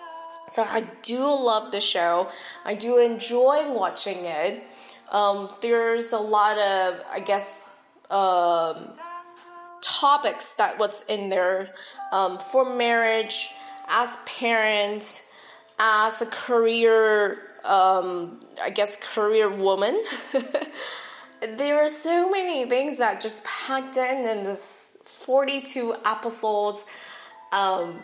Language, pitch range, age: Chinese, 200-255 Hz, 10-29